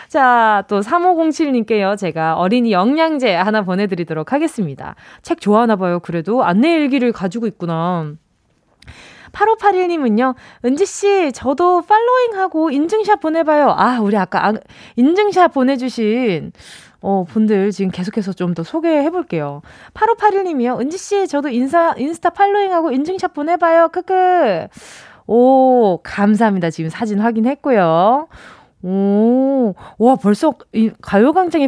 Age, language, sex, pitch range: 20-39, Korean, female, 185-315 Hz